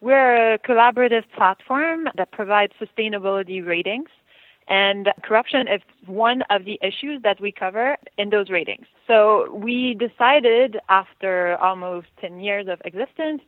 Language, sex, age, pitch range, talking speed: English, female, 20-39, 190-240 Hz, 135 wpm